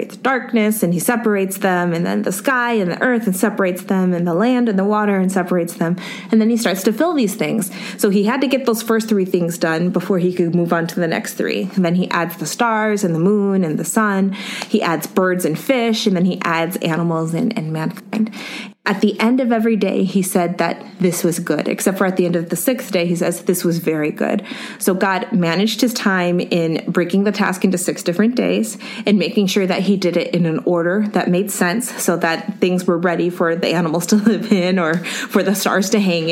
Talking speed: 240 wpm